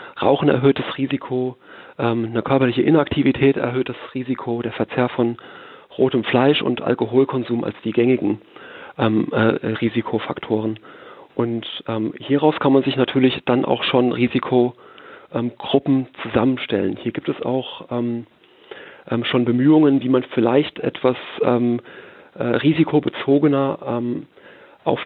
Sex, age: male, 40-59